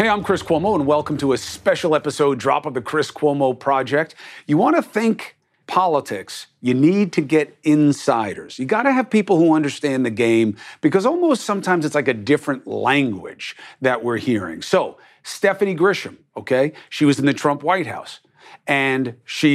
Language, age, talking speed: English, 50-69, 180 wpm